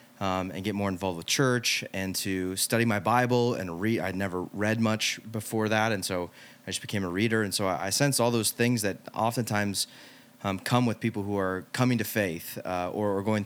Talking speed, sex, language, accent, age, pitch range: 225 wpm, male, English, American, 30-49, 95-115 Hz